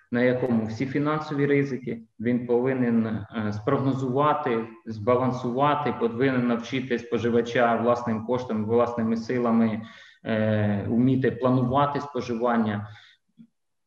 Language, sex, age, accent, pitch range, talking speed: Ukrainian, male, 20-39, native, 110-130 Hz, 85 wpm